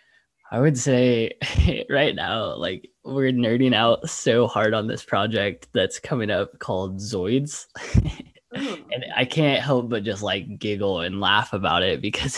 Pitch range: 100-115 Hz